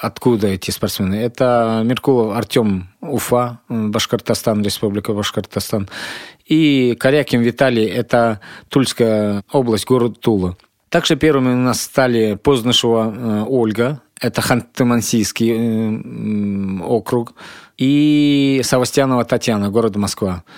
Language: Russian